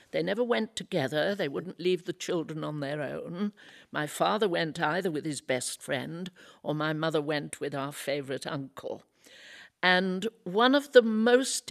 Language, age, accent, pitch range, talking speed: English, 60-79, British, 160-210 Hz, 170 wpm